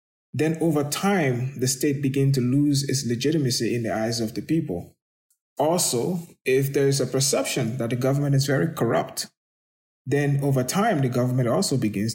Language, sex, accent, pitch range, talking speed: English, male, Nigerian, 130-155 Hz, 175 wpm